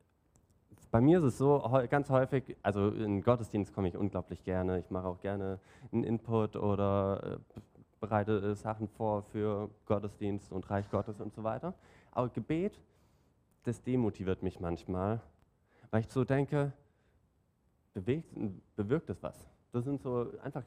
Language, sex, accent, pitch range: German, male, German, 100-125 Hz